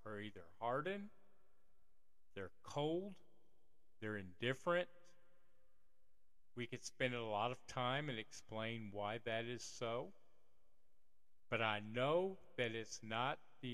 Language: English